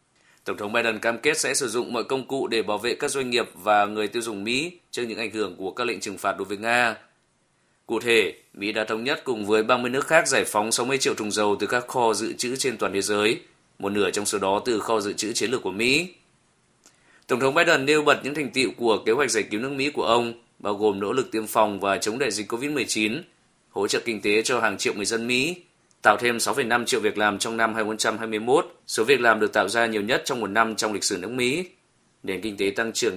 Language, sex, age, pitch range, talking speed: Vietnamese, male, 20-39, 105-120 Hz, 255 wpm